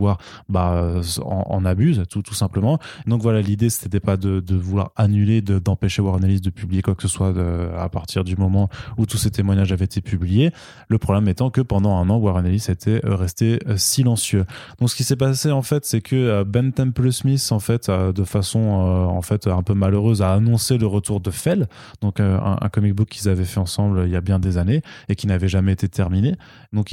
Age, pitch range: 20-39, 95-115 Hz